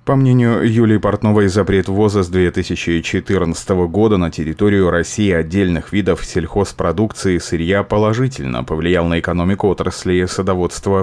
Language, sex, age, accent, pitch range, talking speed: Russian, male, 30-49, native, 85-105 Hz, 125 wpm